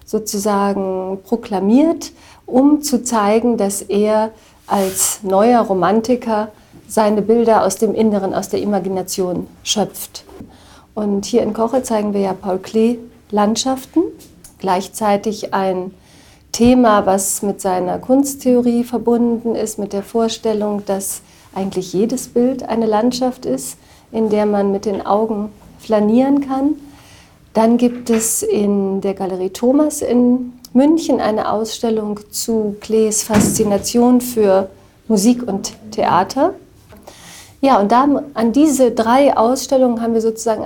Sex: female